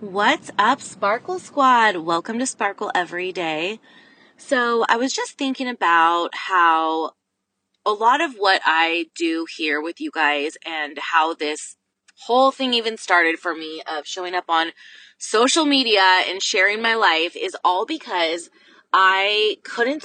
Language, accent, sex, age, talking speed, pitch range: English, American, female, 20-39, 150 wpm, 170-265 Hz